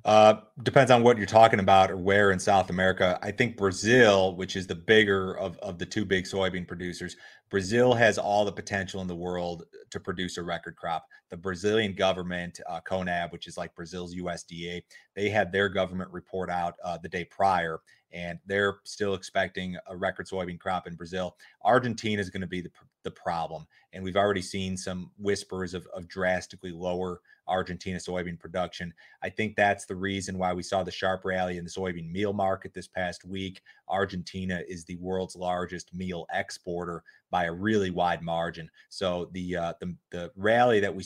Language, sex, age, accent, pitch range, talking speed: English, male, 30-49, American, 90-100 Hz, 190 wpm